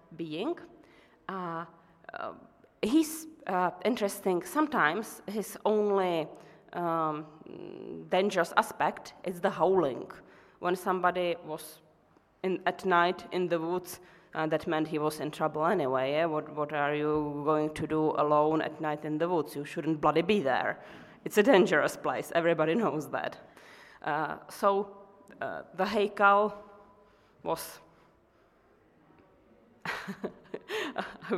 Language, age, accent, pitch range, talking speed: Italian, 30-49, Finnish, 155-185 Hz, 125 wpm